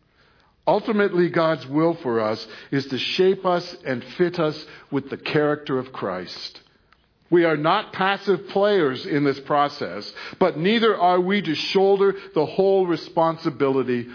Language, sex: English, male